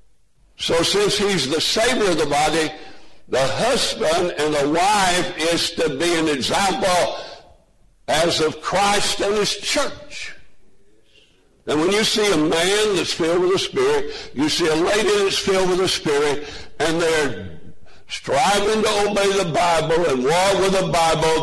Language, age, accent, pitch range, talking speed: English, 60-79, American, 170-215 Hz, 155 wpm